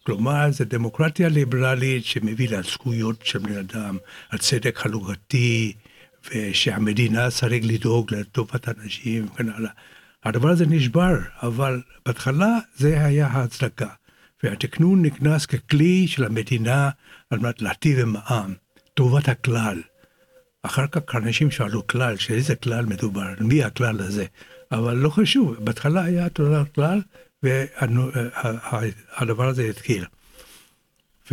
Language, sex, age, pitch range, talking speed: Hebrew, male, 60-79, 115-145 Hz, 110 wpm